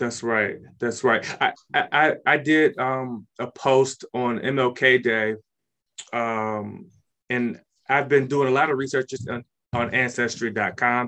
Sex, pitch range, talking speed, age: male, 120-140 Hz, 145 wpm, 20-39